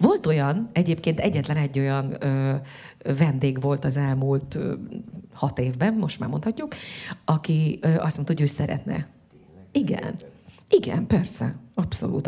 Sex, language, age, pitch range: female, Hungarian, 30-49, 135-175 Hz